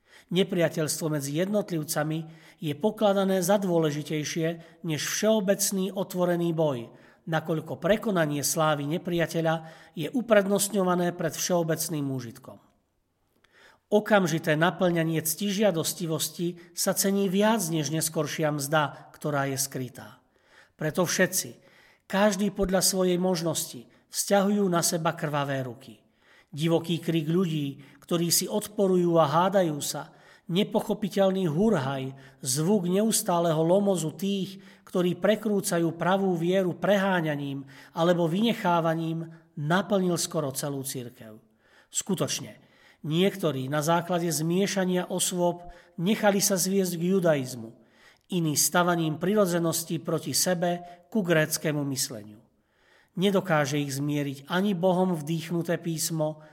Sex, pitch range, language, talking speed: male, 150-190 Hz, Slovak, 100 wpm